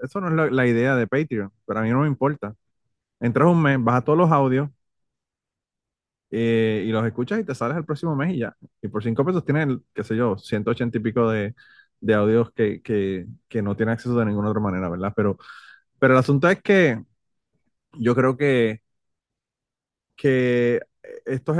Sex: male